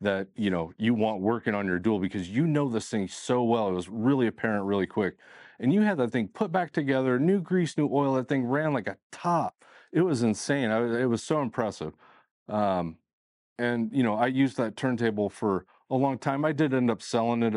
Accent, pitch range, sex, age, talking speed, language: American, 90-120 Hz, male, 30-49, 230 wpm, English